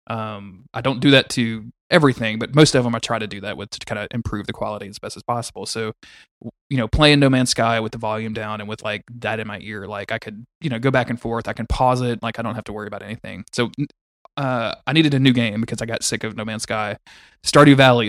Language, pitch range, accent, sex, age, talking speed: English, 115-135 Hz, American, male, 20-39, 275 wpm